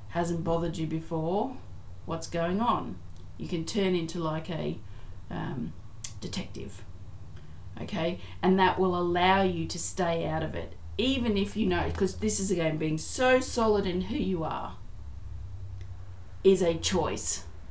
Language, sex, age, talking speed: English, female, 40-59, 150 wpm